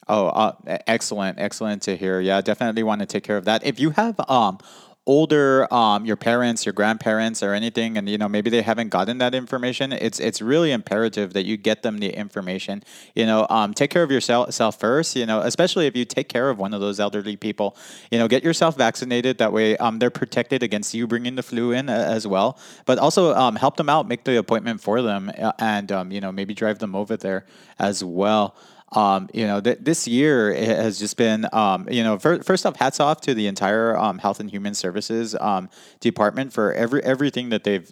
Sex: male